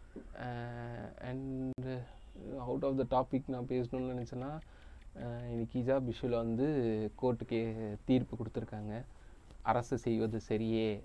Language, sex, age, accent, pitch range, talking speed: Tamil, male, 20-39, native, 110-125 Hz, 100 wpm